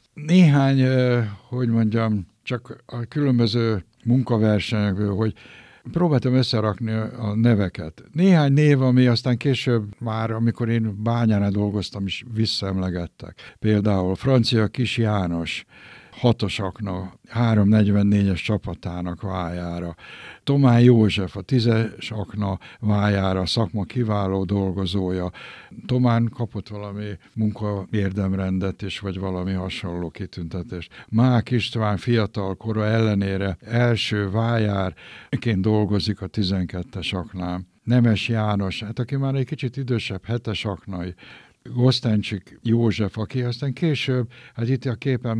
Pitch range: 95-120 Hz